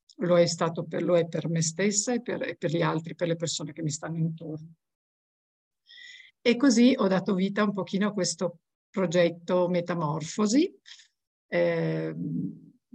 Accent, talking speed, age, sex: native, 160 wpm, 50-69, female